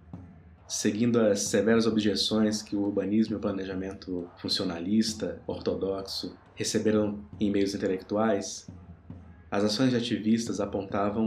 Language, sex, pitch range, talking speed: Portuguese, male, 95-110 Hz, 110 wpm